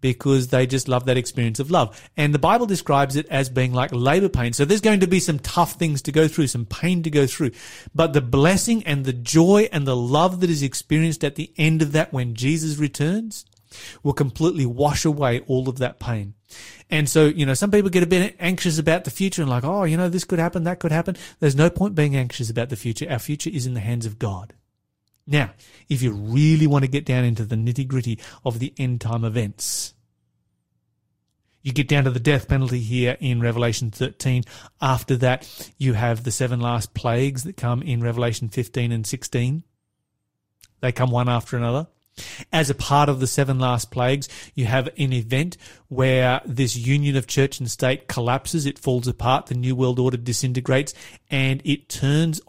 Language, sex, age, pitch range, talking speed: English, male, 30-49, 120-155 Hz, 205 wpm